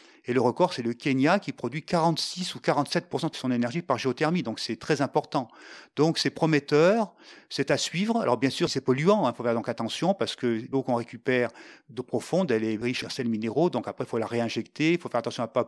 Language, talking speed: French, 240 wpm